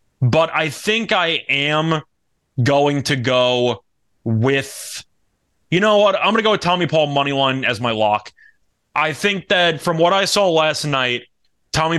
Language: English